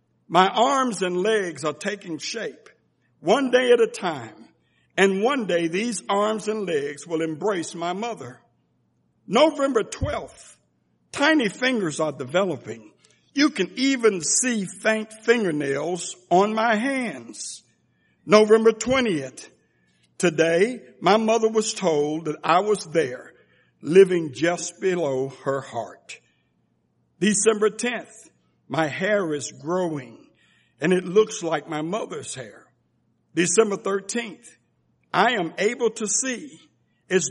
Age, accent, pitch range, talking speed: 60-79, American, 160-225 Hz, 120 wpm